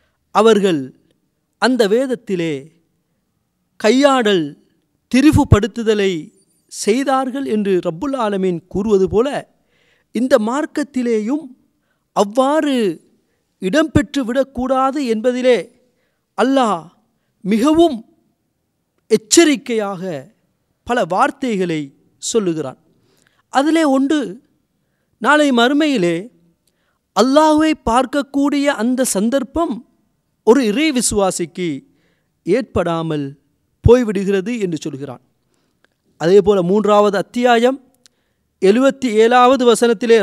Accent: native